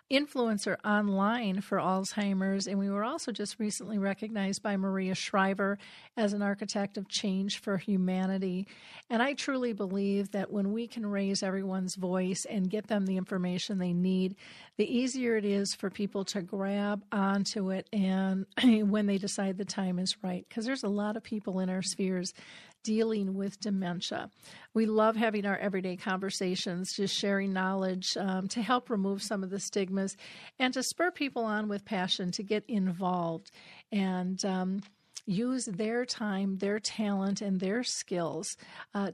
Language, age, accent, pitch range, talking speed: English, 40-59, American, 190-220 Hz, 165 wpm